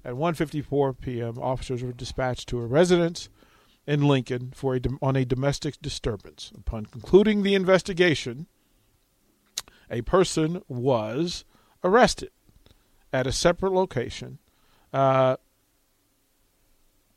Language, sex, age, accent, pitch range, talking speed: English, male, 40-59, American, 125-160 Hz, 110 wpm